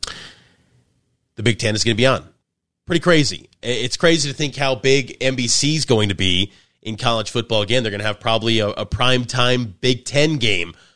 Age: 30-49